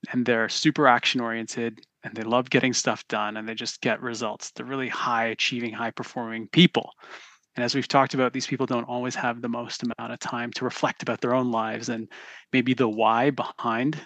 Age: 30-49